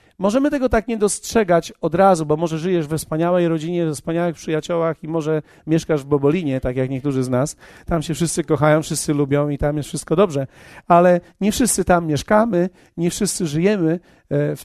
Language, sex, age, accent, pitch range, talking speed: Polish, male, 40-59, native, 155-195 Hz, 190 wpm